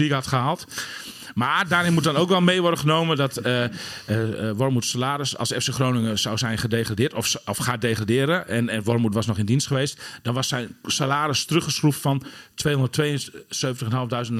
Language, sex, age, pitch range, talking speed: Dutch, male, 40-59, 115-145 Hz, 170 wpm